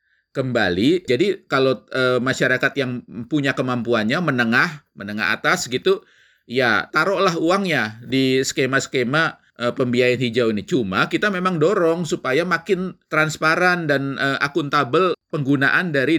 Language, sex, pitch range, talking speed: Indonesian, male, 125-160 Hz, 120 wpm